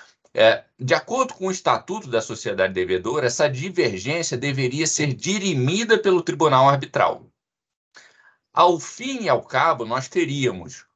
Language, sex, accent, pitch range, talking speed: Portuguese, male, Brazilian, 120-185 Hz, 125 wpm